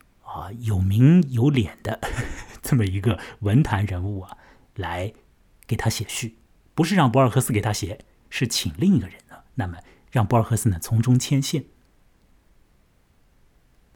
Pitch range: 100-135 Hz